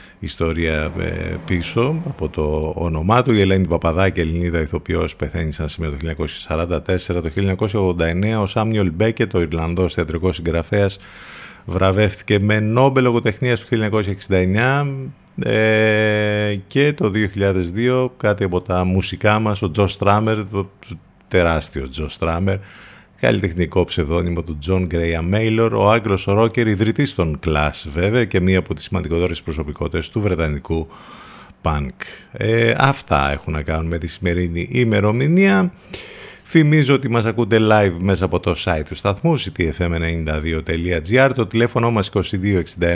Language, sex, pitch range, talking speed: Greek, male, 85-110 Hz, 130 wpm